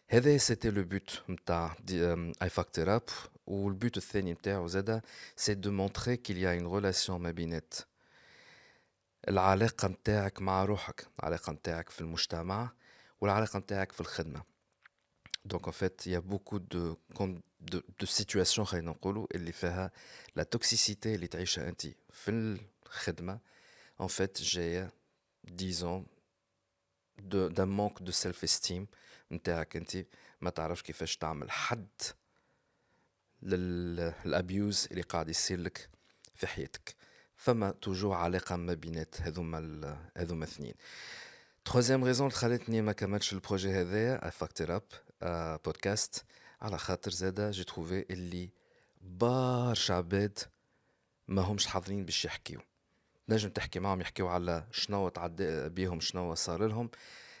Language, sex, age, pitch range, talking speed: Arabic, male, 50-69, 85-105 Hz, 110 wpm